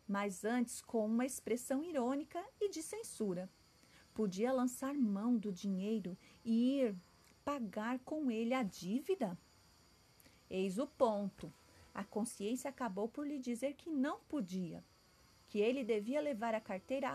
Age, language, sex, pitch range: 40-59, Portuguese, female, 205-275 Hz